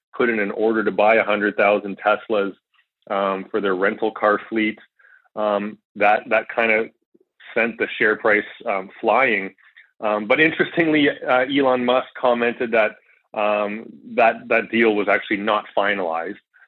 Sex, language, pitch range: male, English, 100-125 Hz